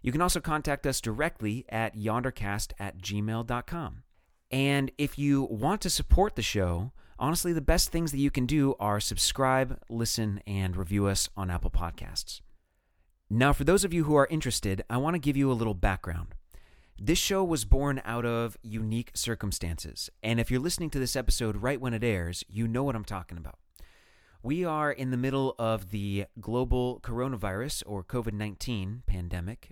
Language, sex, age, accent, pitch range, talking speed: English, male, 30-49, American, 95-135 Hz, 180 wpm